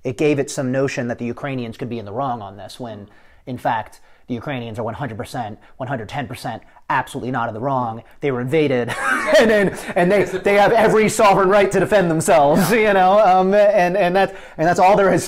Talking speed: 200 wpm